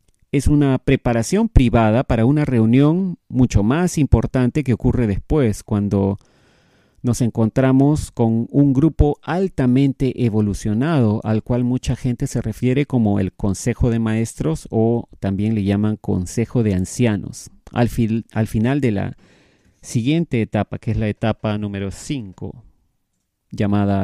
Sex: male